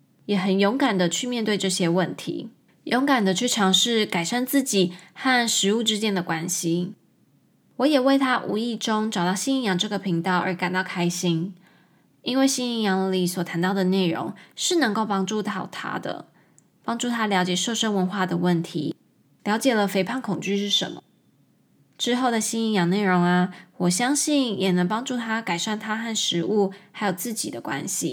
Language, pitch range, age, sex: Chinese, 180-245 Hz, 20-39, female